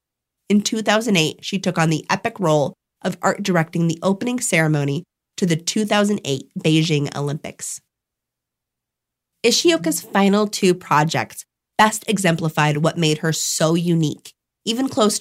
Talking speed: 125 wpm